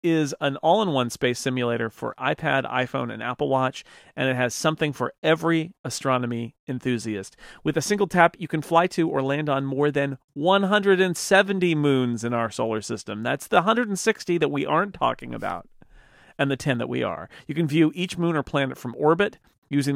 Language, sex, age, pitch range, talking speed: English, male, 40-59, 125-155 Hz, 185 wpm